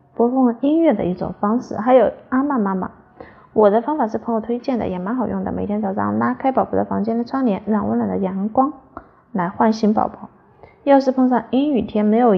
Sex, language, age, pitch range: female, Chinese, 20-39, 190-245 Hz